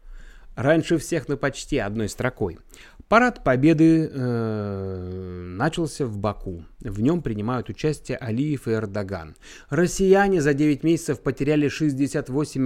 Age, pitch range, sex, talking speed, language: 30-49, 120-160 Hz, male, 115 wpm, Russian